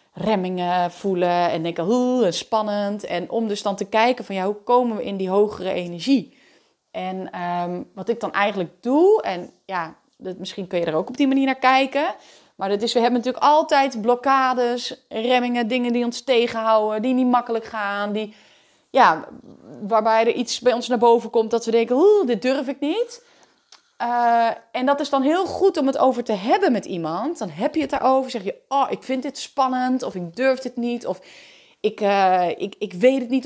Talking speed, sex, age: 205 wpm, female, 30-49